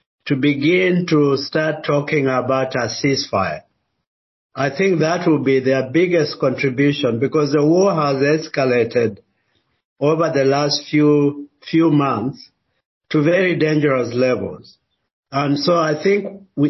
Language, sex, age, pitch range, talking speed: English, male, 50-69, 135-160 Hz, 130 wpm